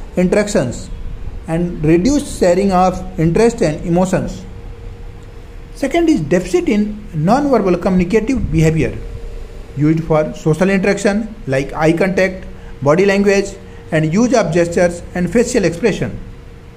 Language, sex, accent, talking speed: Hindi, male, native, 115 wpm